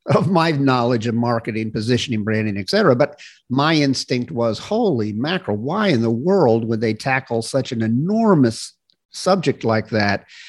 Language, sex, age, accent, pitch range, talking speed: English, male, 50-69, American, 115-145 Hz, 160 wpm